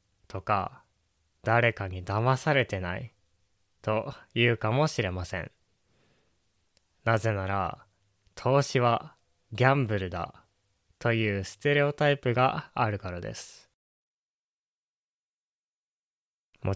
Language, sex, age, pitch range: Japanese, male, 20-39, 100-130 Hz